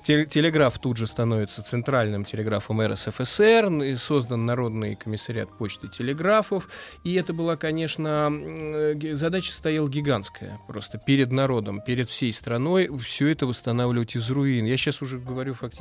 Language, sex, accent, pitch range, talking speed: Russian, male, native, 110-150 Hz, 130 wpm